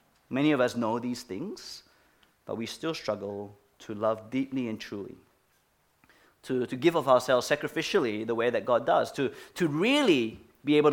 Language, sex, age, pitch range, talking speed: English, male, 30-49, 125-180 Hz, 170 wpm